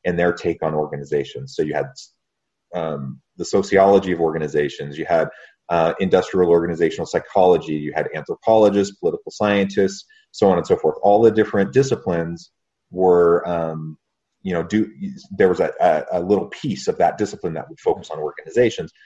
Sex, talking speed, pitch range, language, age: male, 165 wpm, 80-110 Hz, English, 30-49